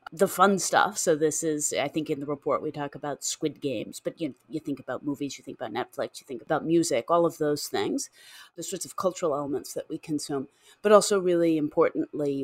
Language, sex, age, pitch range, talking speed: English, female, 30-49, 140-175 Hz, 220 wpm